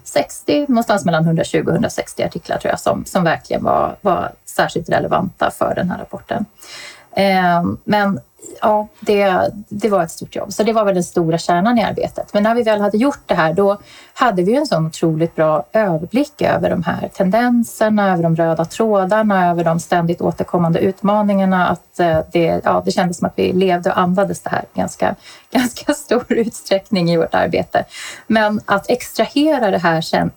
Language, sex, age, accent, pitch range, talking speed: Swedish, female, 30-49, native, 170-215 Hz, 185 wpm